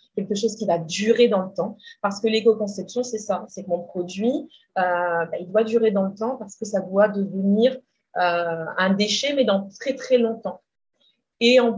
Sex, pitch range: female, 185-230 Hz